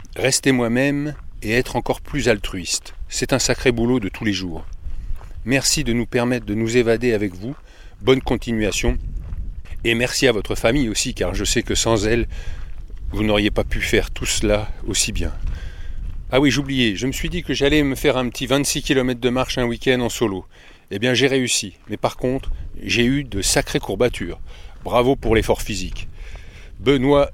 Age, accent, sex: 40-59, French, male